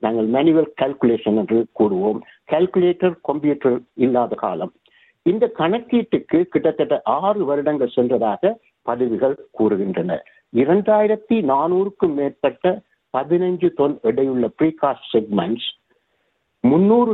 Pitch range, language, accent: 130-205 Hz, Tamil, native